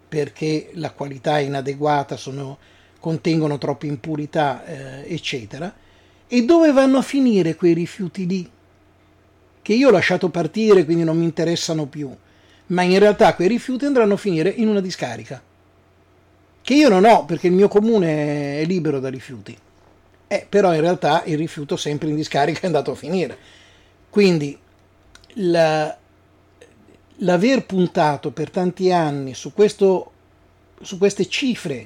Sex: male